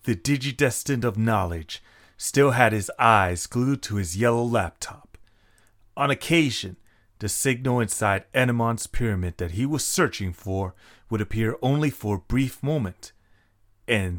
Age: 30-49